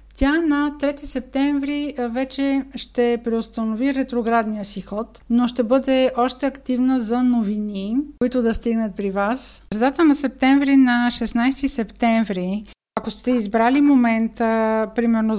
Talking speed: 130 wpm